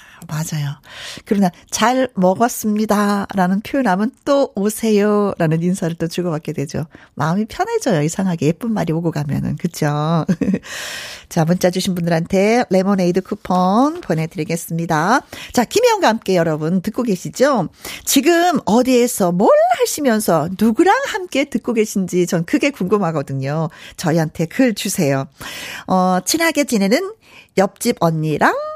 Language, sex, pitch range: Korean, female, 175-270 Hz